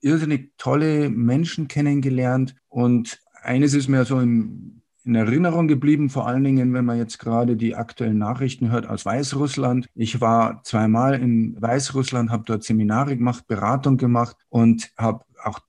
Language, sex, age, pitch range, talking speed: German, male, 50-69, 115-140 Hz, 155 wpm